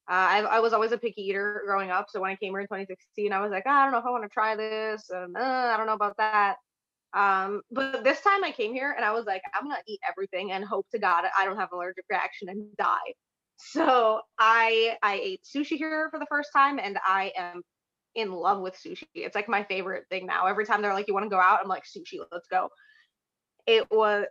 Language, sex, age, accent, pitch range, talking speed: English, female, 20-39, American, 195-255 Hz, 250 wpm